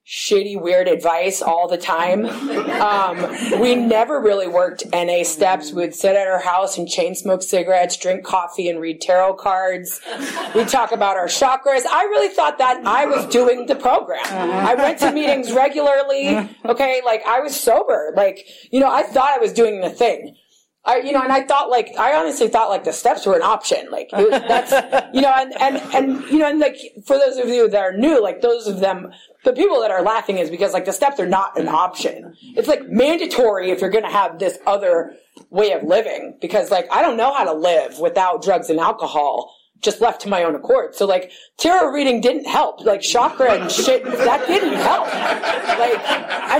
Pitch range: 190-280 Hz